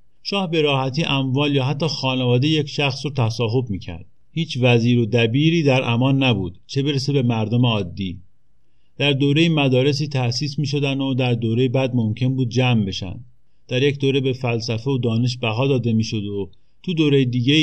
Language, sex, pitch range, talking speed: Persian, male, 110-140 Hz, 180 wpm